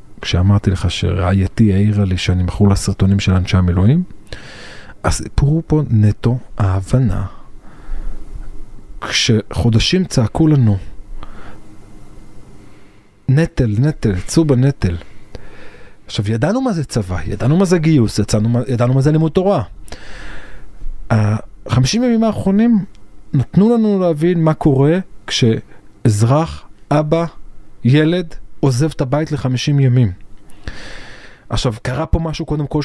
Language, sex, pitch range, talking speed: Hebrew, male, 105-145 Hz, 110 wpm